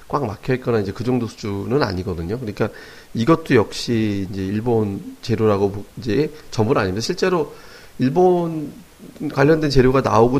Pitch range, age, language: 105-135 Hz, 30-49, Korean